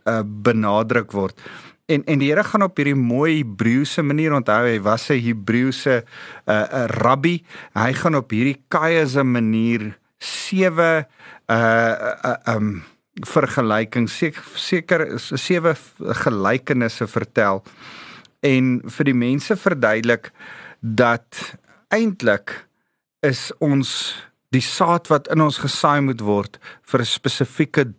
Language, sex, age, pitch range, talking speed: English, male, 50-69, 115-160 Hz, 115 wpm